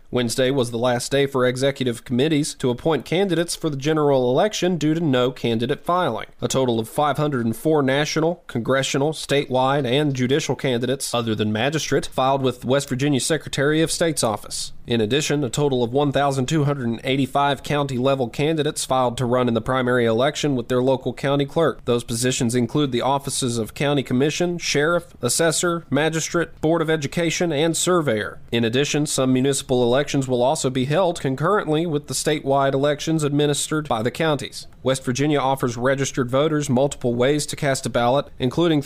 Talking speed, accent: 165 wpm, American